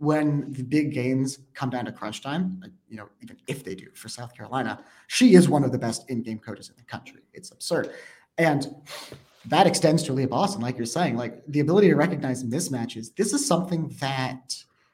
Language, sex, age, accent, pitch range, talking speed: English, male, 30-49, American, 115-145 Hz, 200 wpm